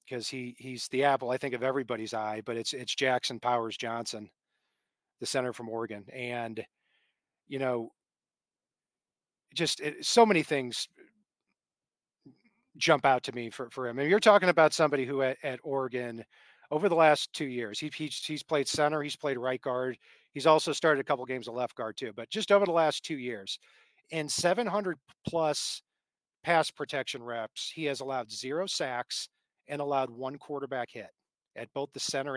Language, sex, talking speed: English, male, 175 wpm